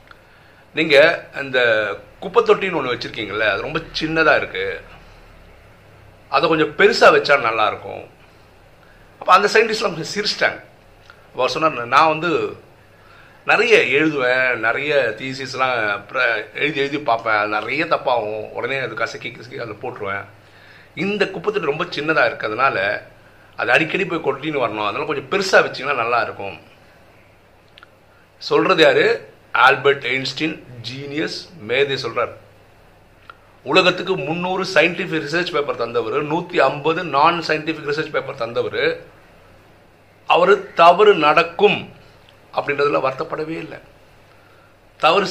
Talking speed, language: 85 wpm, Tamil